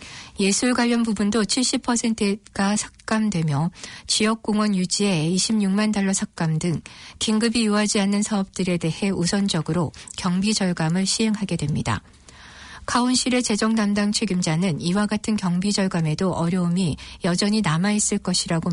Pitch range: 170-215 Hz